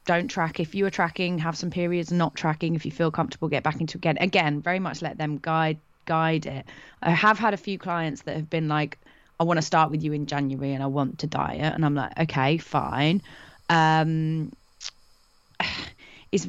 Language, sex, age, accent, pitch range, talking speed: English, female, 20-39, British, 150-175 Hz, 205 wpm